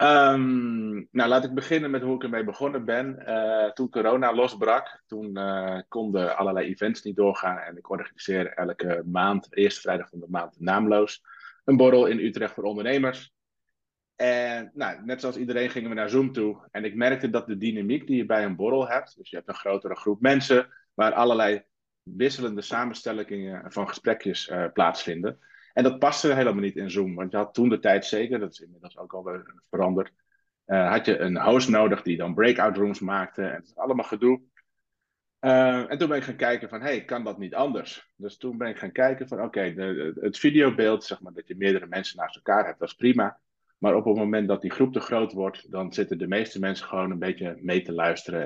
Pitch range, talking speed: 95-125 Hz, 210 wpm